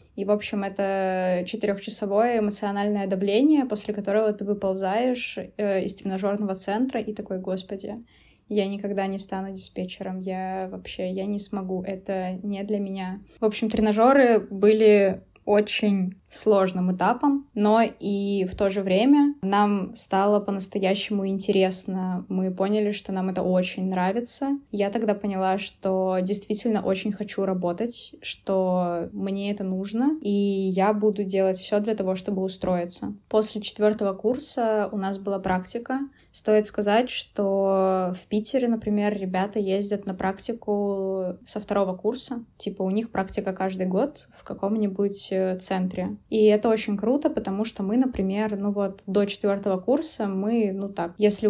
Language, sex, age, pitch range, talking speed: Russian, female, 20-39, 190-215 Hz, 140 wpm